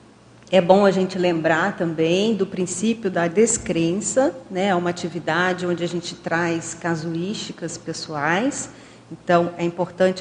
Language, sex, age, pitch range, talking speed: Portuguese, female, 40-59, 170-210 Hz, 135 wpm